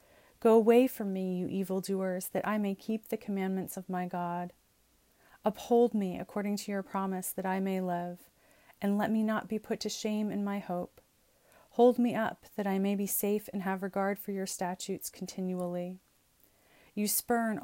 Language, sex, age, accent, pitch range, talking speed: English, female, 30-49, American, 185-215 Hz, 180 wpm